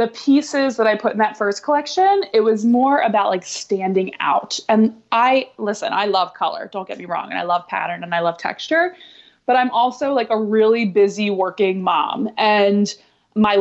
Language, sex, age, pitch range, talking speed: English, female, 20-39, 200-245 Hz, 200 wpm